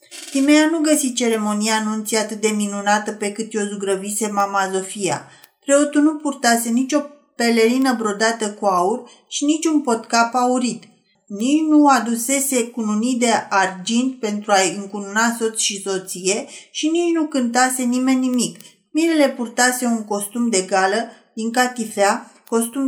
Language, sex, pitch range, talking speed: Romanian, female, 215-265 Hz, 135 wpm